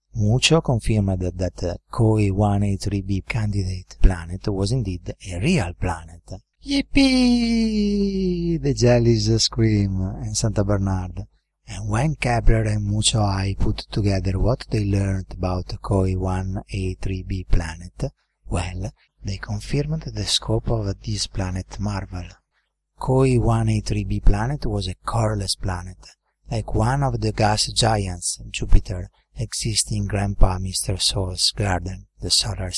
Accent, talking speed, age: Italian, 120 wpm, 30-49